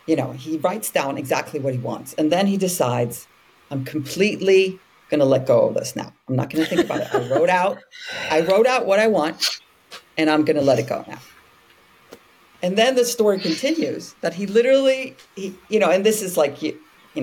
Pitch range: 135-185 Hz